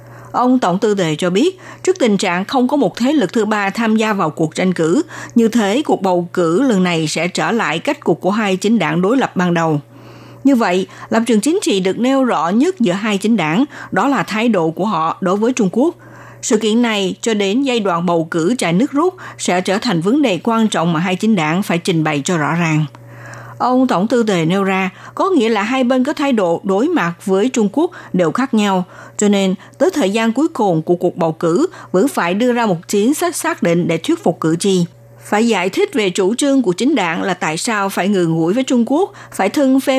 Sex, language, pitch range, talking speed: female, Vietnamese, 180-250 Hz, 245 wpm